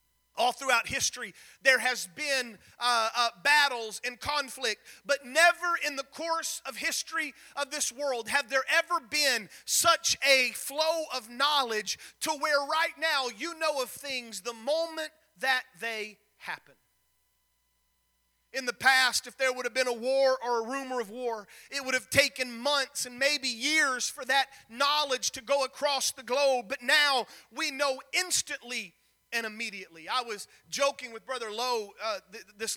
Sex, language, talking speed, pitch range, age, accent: male, English, 165 wpm, 235-290 Hz, 40-59, American